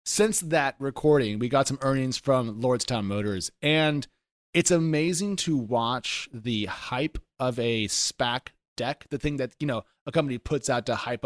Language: English